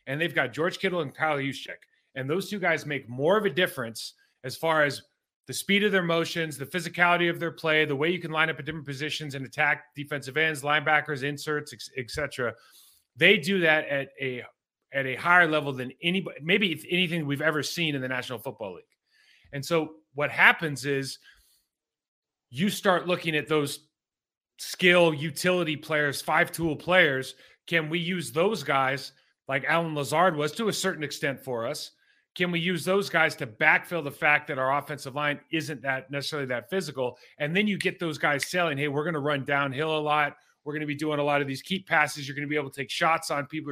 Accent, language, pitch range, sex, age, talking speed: American, English, 140-170 Hz, male, 30-49, 205 wpm